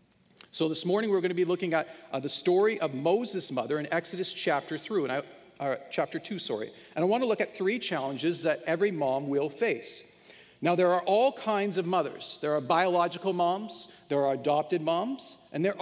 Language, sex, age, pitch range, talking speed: English, male, 40-59, 150-195 Hz, 210 wpm